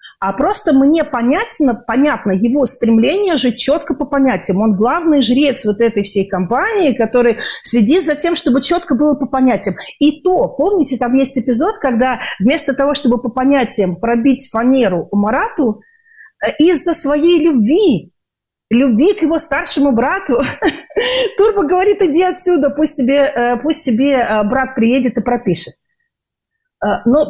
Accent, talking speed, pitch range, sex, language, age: native, 135 wpm, 225-300 Hz, female, Russian, 40-59